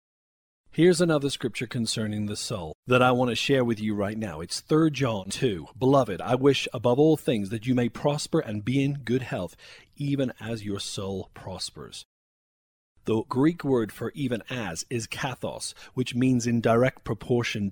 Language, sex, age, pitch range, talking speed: English, male, 40-59, 105-140 Hz, 175 wpm